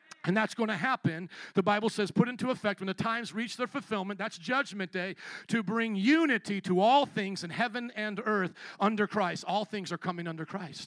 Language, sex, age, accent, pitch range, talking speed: English, male, 40-59, American, 200-270 Hz, 210 wpm